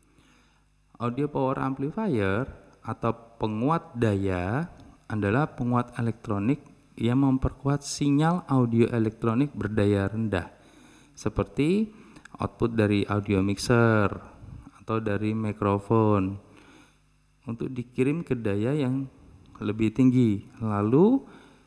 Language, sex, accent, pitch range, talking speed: Indonesian, male, native, 105-135 Hz, 90 wpm